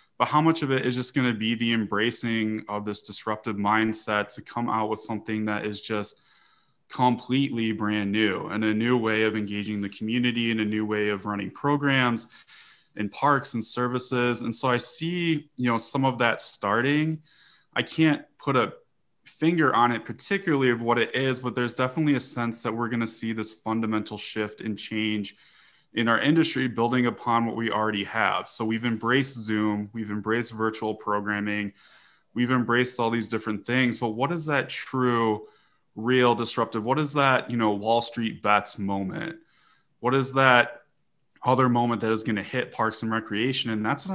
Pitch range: 110-125 Hz